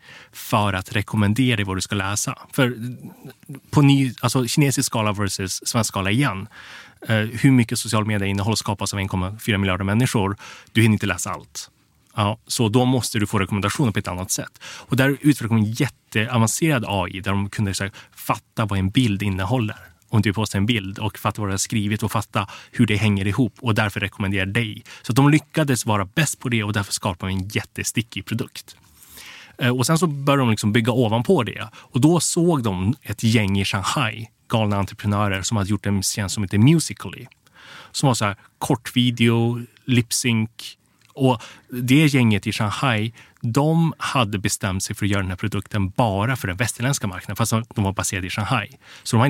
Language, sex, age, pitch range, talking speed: Swedish, male, 20-39, 100-125 Hz, 190 wpm